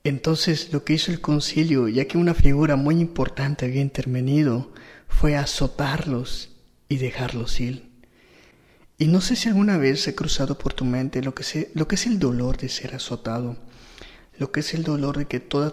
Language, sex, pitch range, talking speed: Spanish, male, 130-155 Hz, 185 wpm